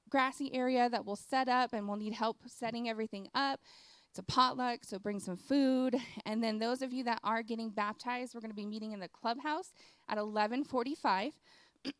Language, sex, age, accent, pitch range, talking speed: English, female, 20-39, American, 205-250 Hz, 195 wpm